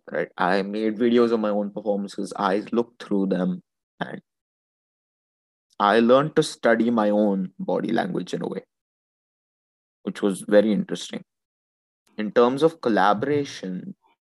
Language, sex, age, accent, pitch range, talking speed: English, male, 20-39, Indian, 95-120 Hz, 135 wpm